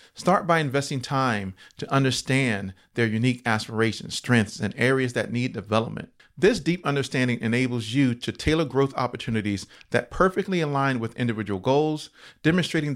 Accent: American